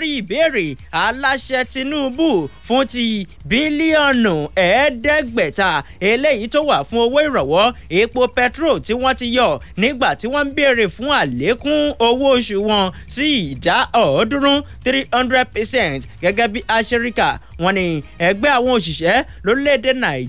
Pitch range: 205-270 Hz